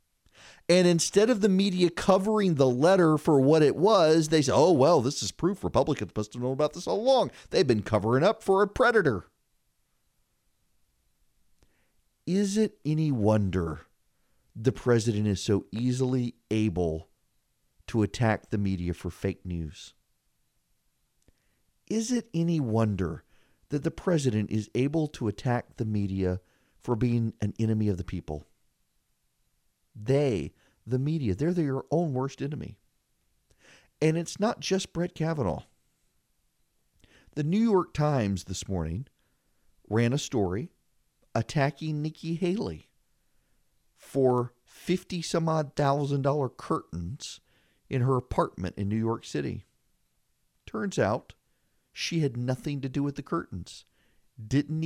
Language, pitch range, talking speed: English, 110-160 Hz, 130 wpm